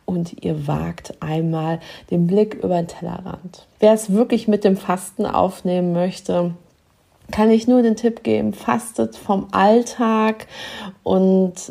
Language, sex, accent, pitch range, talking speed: German, female, German, 175-210 Hz, 140 wpm